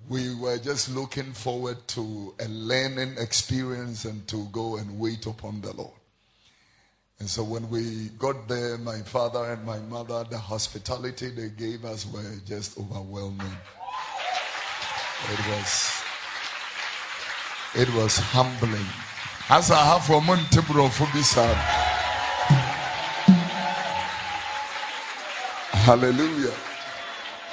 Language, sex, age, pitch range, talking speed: English, male, 50-69, 110-135 Hz, 95 wpm